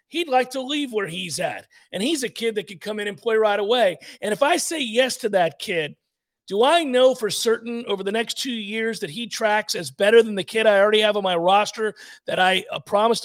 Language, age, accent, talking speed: English, 40-59, American, 245 wpm